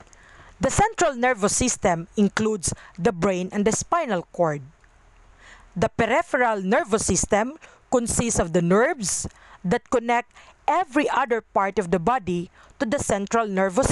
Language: English